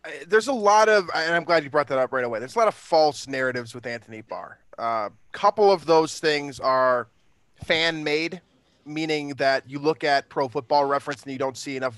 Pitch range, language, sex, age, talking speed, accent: 130-165 Hz, English, male, 20-39, 215 wpm, American